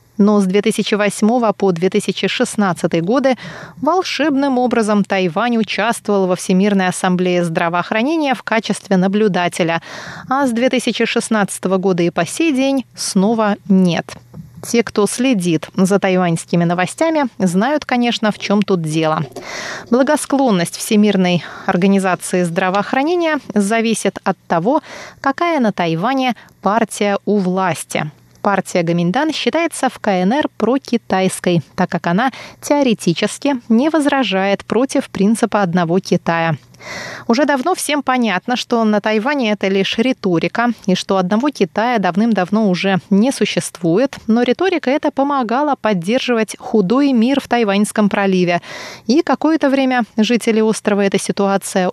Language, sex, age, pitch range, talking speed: Russian, female, 30-49, 185-245 Hz, 120 wpm